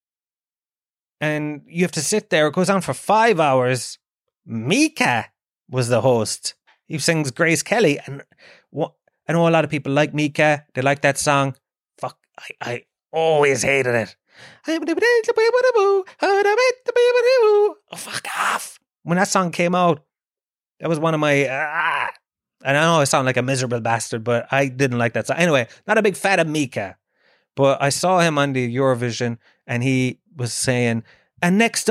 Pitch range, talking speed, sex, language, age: 120-180 Hz, 165 wpm, male, English, 30-49